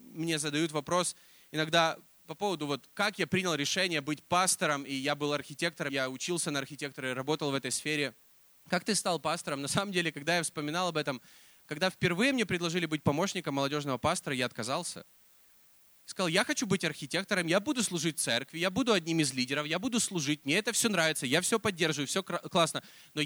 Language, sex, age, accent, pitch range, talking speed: Russian, male, 20-39, native, 155-245 Hz, 190 wpm